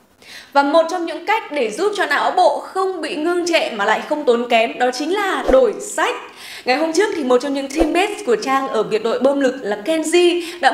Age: 20-39